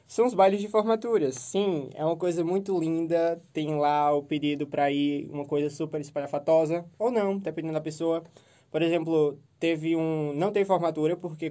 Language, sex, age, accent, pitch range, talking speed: Portuguese, male, 20-39, Brazilian, 145-175 Hz, 175 wpm